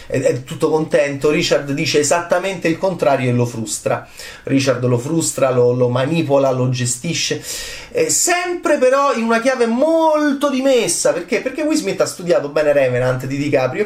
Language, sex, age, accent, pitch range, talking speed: Italian, male, 30-49, native, 145-225 Hz, 165 wpm